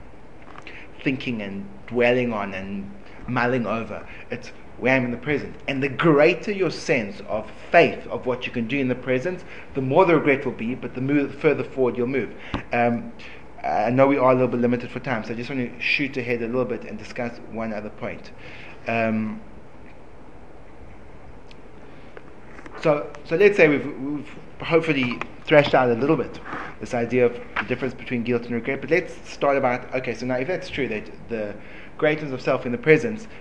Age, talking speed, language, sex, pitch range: 30-49, 190 wpm, English, male, 115-140 Hz